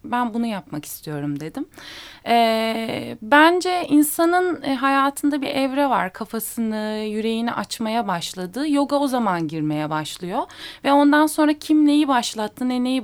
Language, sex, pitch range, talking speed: Turkish, female, 185-285 Hz, 130 wpm